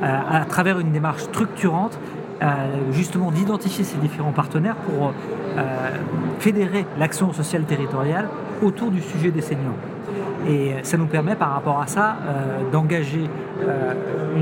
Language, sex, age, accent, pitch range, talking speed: French, male, 40-59, French, 150-190 Hz, 140 wpm